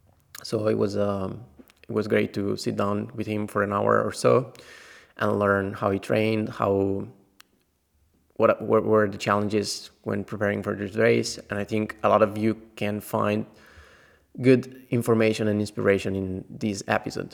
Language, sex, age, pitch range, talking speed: English, male, 20-39, 100-110 Hz, 170 wpm